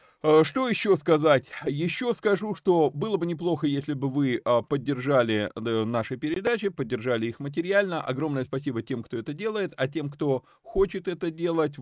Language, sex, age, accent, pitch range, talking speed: Russian, male, 30-49, native, 125-160 Hz, 150 wpm